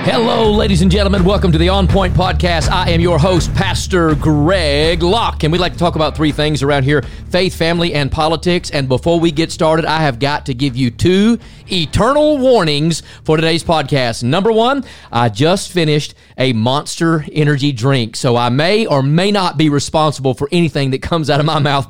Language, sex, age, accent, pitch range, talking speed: English, male, 40-59, American, 135-185 Hz, 200 wpm